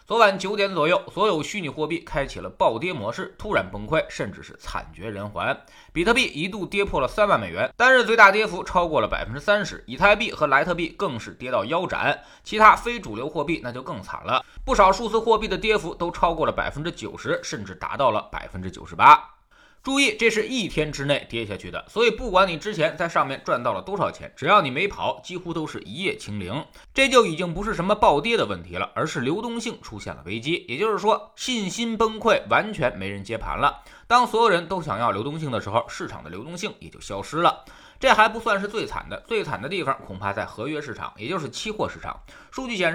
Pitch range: 140-220 Hz